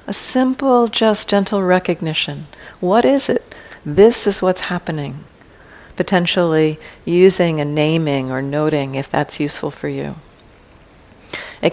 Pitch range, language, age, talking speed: 150-180 Hz, English, 50-69, 125 wpm